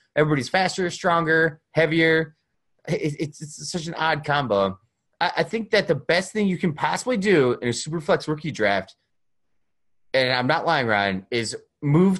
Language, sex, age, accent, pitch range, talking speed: English, male, 30-49, American, 145-190 Hz, 170 wpm